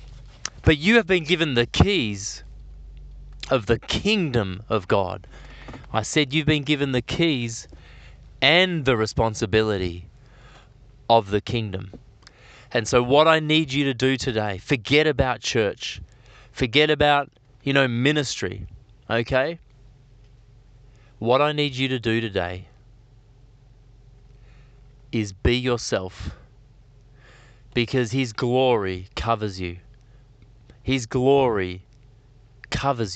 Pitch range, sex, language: 110-135 Hz, male, English